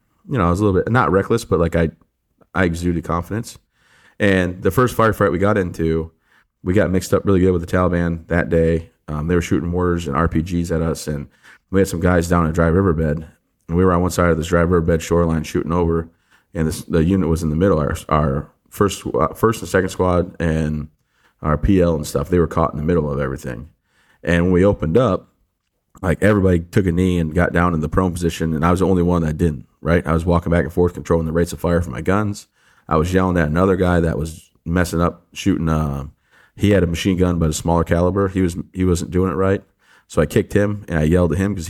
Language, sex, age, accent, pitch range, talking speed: English, male, 30-49, American, 80-95 Hz, 245 wpm